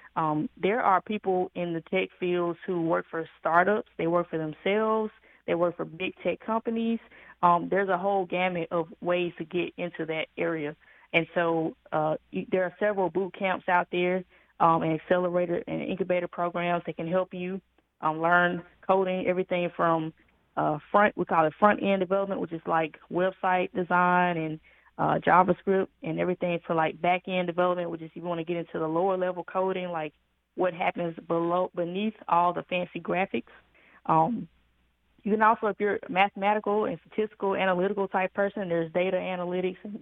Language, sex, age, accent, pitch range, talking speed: English, female, 20-39, American, 170-190 Hz, 175 wpm